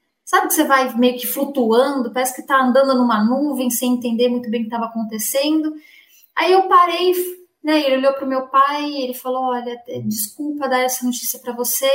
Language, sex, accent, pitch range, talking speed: Portuguese, female, Brazilian, 225-275 Hz, 200 wpm